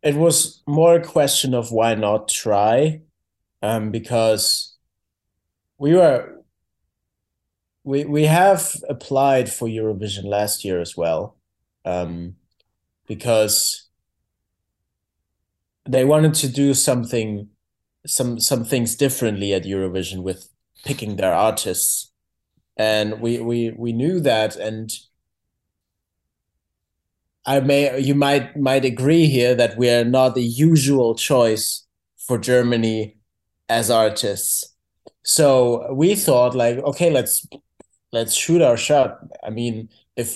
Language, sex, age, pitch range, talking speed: Greek, male, 30-49, 105-135 Hz, 115 wpm